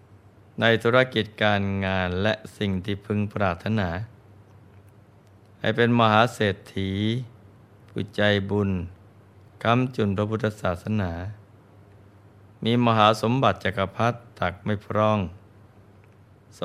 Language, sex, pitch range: Thai, male, 100-110 Hz